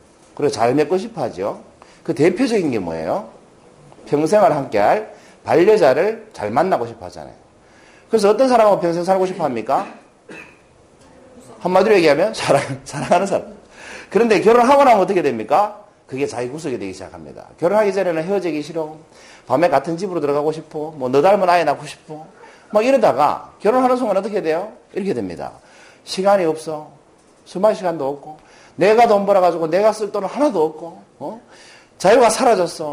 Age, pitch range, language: 40-59, 145-210 Hz, Korean